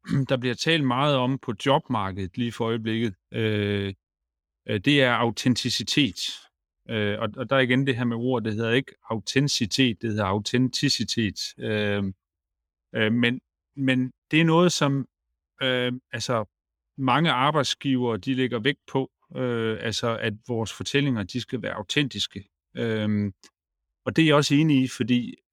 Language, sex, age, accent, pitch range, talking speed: Danish, male, 30-49, native, 105-130 Hz, 155 wpm